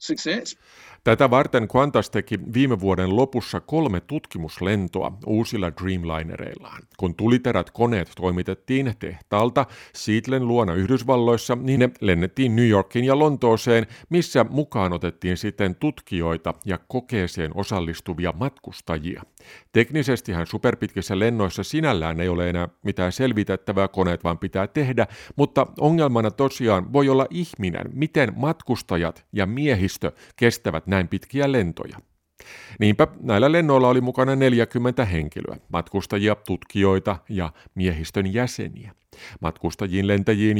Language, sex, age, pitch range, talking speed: Finnish, male, 50-69, 95-125 Hz, 110 wpm